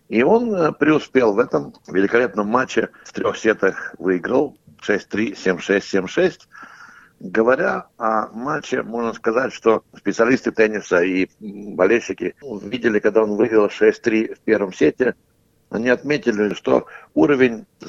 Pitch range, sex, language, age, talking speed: 100-125 Hz, male, Russian, 60-79, 120 wpm